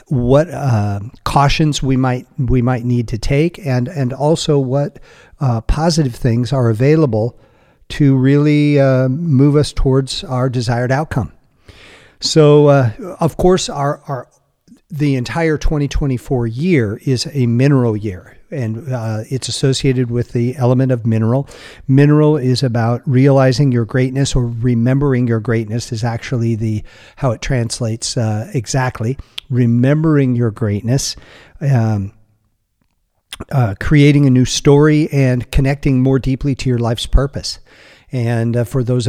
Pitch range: 120-140 Hz